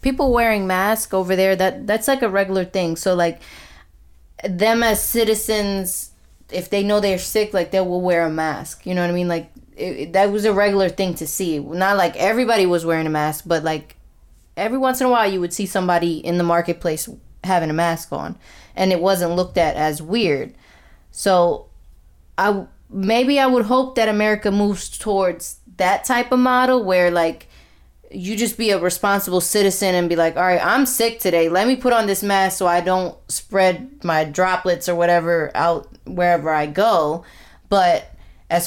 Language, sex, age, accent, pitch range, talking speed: English, female, 10-29, American, 170-220 Hz, 190 wpm